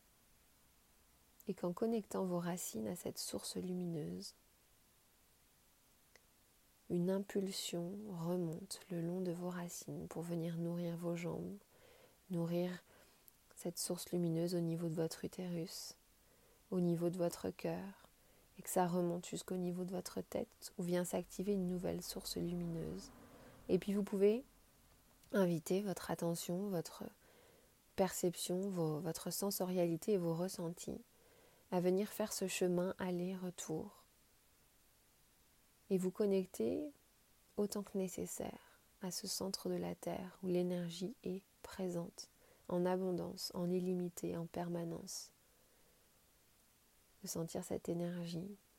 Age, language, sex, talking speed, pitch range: 30-49, French, female, 120 wpm, 170-190 Hz